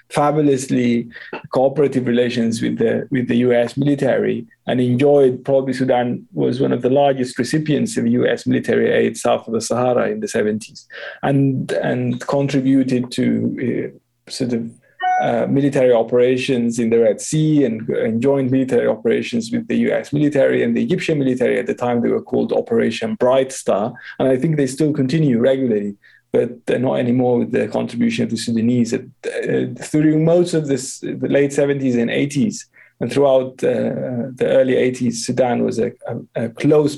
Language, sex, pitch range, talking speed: English, male, 120-140 Hz, 170 wpm